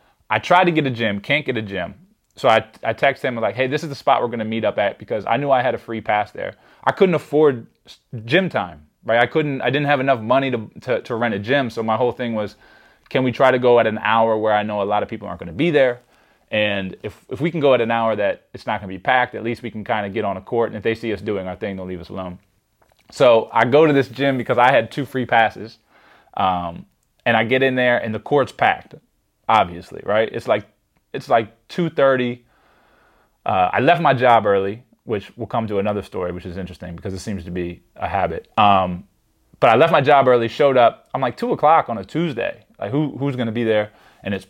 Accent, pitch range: American, 105-130 Hz